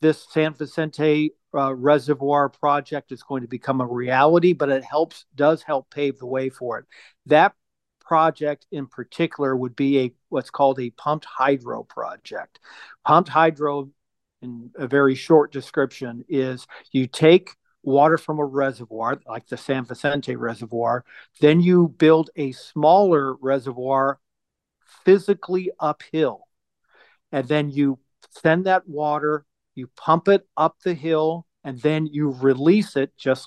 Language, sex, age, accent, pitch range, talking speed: English, male, 50-69, American, 130-155 Hz, 145 wpm